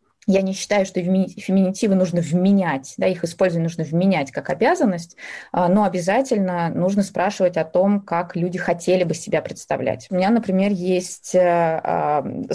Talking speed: 145 wpm